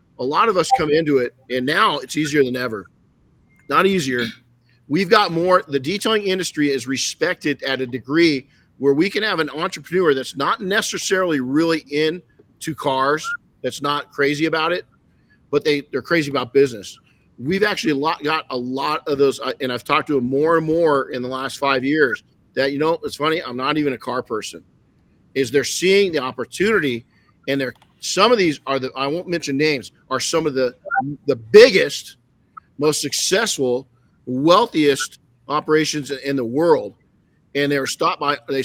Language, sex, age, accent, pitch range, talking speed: English, male, 50-69, American, 130-165 Hz, 180 wpm